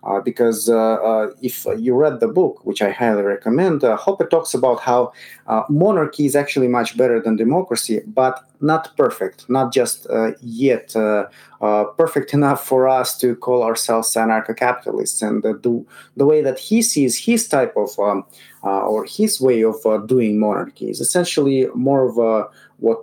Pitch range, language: 110-135 Hz, English